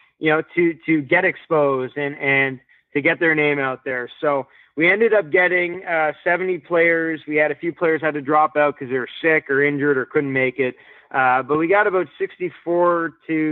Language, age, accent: English, 20-39, American